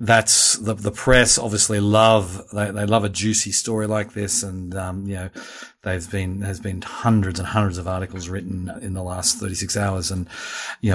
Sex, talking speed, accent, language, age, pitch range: male, 210 wpm, Australian, English, 40-59, 95-115 Hz